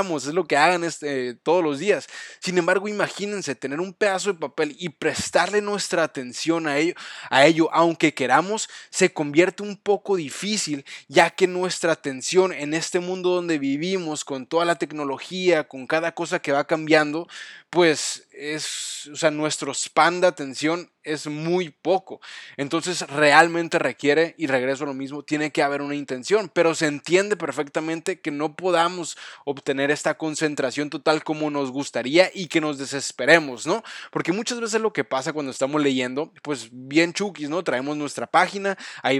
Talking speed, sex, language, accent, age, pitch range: 170 wpm, male, Spanish, Mexican, 20-39, 150-185 Hz